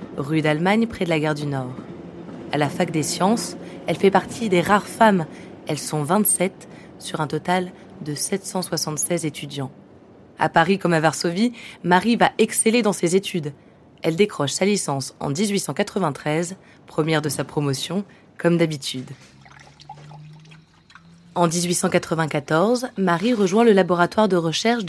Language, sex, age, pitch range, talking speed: French, female, 20-39, 155-195 Hz, 140 wpm